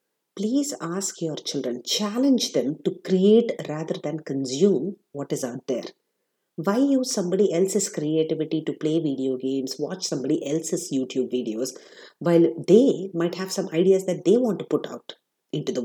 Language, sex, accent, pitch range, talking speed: English, female, Indian, 145-200 Hz, 165 wpm